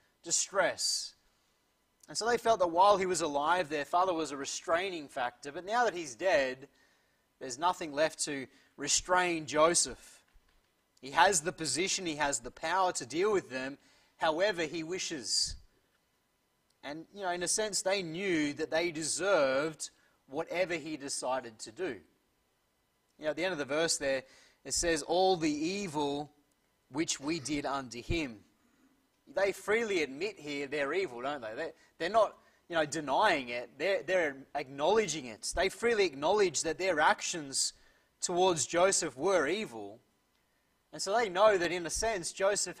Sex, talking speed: male, 160 wpm